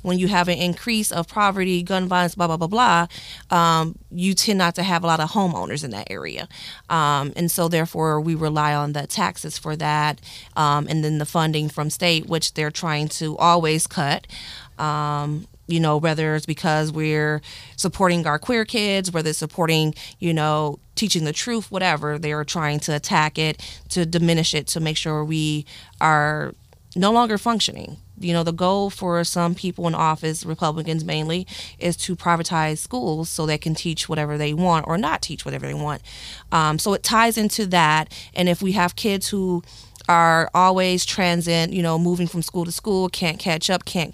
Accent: American